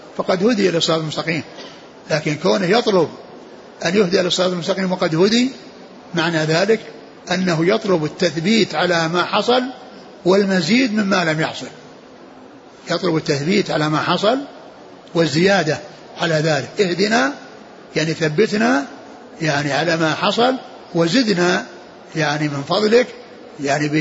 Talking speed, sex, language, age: 110 wpm, male, Arabic, 60-79